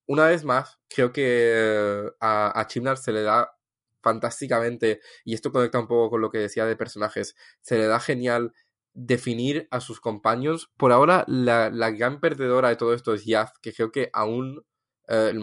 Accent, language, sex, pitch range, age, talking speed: Spanish, English, male, 115-135 Hz, 10-29, 185 wpm